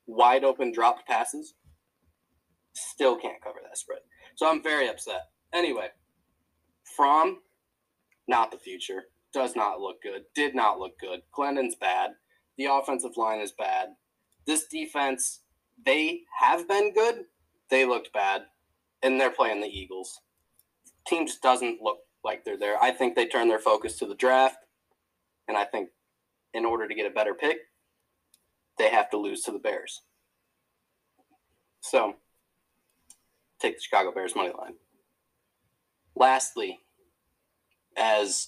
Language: English